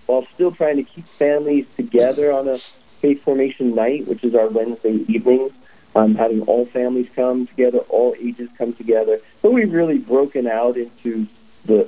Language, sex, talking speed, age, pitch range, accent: English, male, 170 wpm, 40-59, 110-140 Hz, American